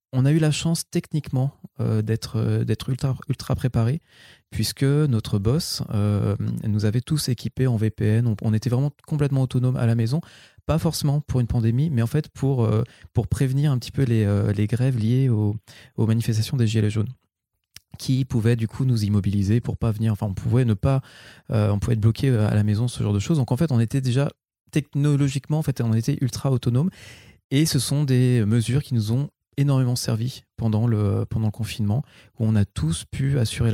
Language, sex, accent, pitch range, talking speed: French, male, French, 110-130 Hz, 210 wpm